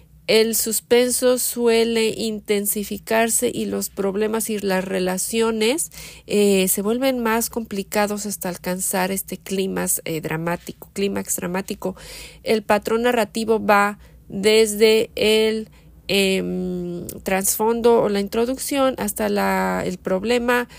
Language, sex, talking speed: Spanish, female, 110 wpm